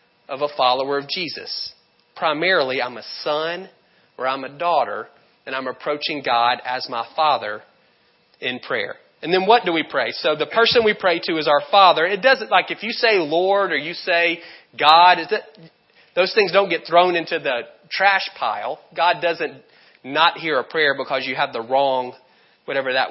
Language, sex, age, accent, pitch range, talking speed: English, male, 30-49, American, 140-185 Hz, 180 wpm